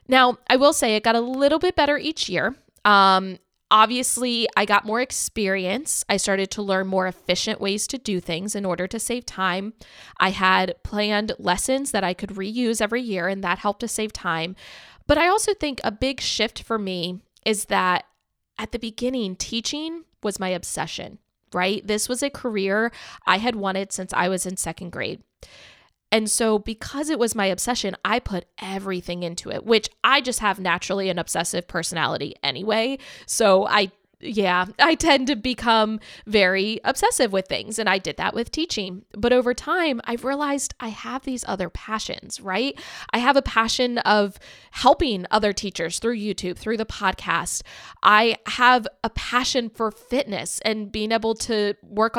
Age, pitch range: 20-39, 195-250 Hz